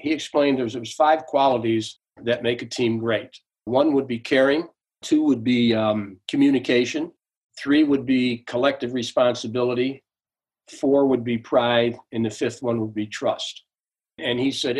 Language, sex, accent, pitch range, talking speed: English, male, American, 115-135 Hz, 160 wpm